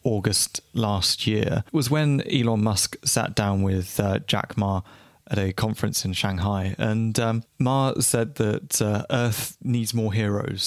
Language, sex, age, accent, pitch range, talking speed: English, male, 20-39, British, 105-125 Hz, 160 wpm